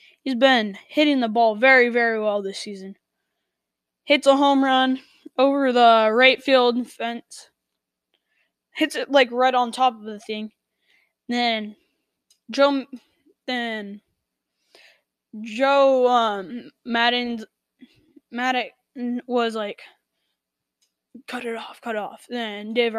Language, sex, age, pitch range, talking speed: English, female, 10-29, 220-260 Hz, 125 wpm